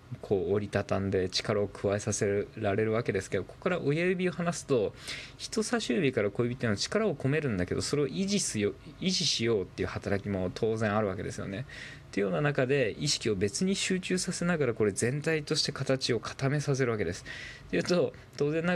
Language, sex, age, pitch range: Japanese, male, 20-39, 105-160 Hz